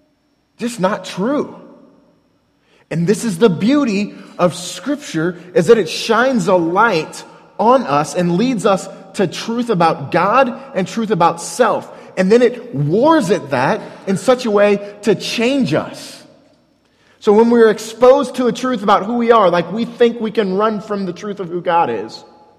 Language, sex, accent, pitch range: English, male, American, 160-225 Hz